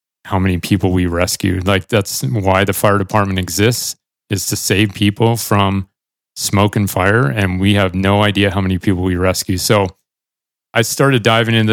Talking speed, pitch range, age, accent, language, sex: 180 wpm, 100-115 Hz, 30-49, American, English, male